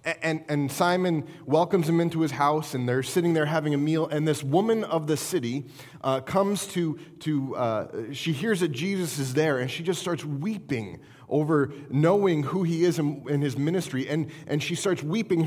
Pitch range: 135-175 Hz